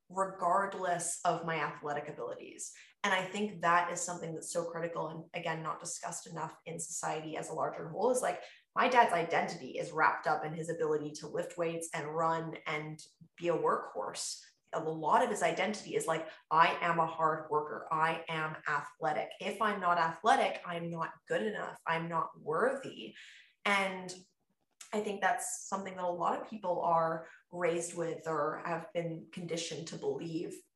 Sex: female